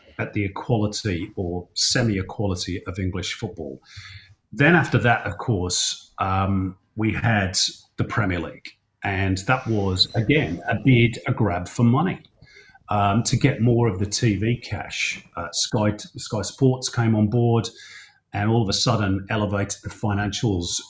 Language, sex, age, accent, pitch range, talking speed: English, male, 40-59, British, 95-130 Hz, 150 wpm